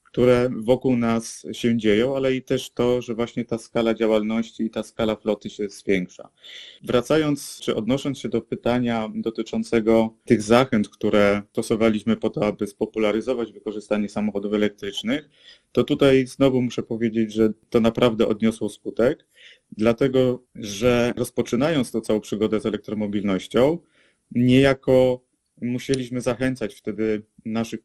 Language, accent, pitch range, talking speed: Polish, native, 110-125 Hz, 130 wpm